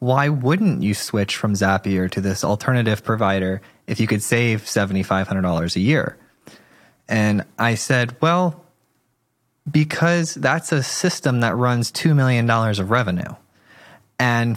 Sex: male